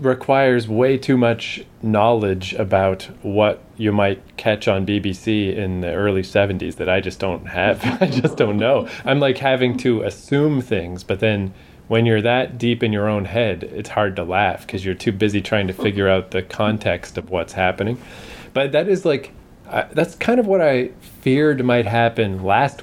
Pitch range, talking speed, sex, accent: 100-125 Hz, 190 wpm, male, American